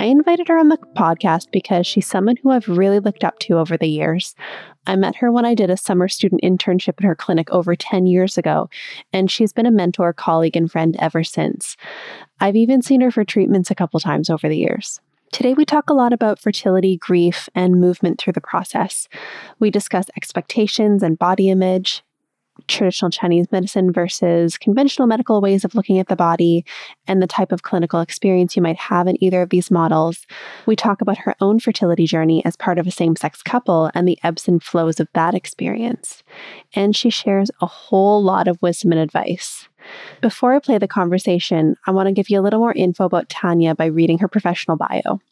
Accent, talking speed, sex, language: American, 205 wpm, female, English